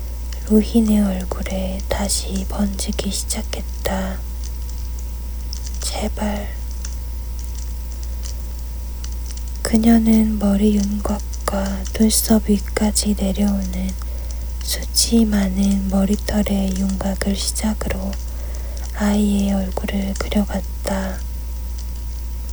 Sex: female